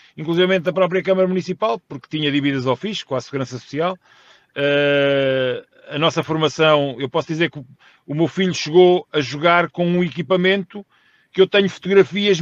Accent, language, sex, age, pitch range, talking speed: Portuguese, Portuguese, male, 40-59, 145-195 Hz, 165 wpm